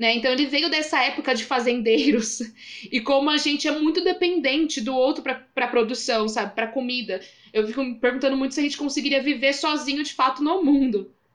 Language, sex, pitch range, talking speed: Portuguese, female, 235-295 Hz, 195 wpm